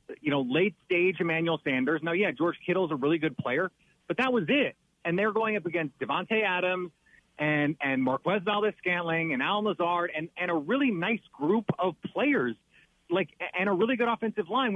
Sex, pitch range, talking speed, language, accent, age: male, 150-195 Hz, 205 wpm, English, American, 30-49